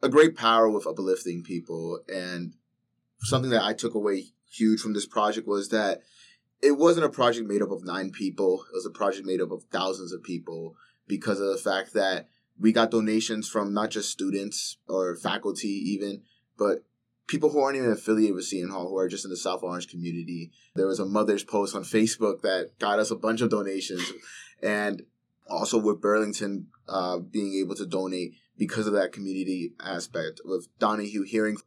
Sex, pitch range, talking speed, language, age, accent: male, 95-110 Hz, 190 wpm, English, 20-39, American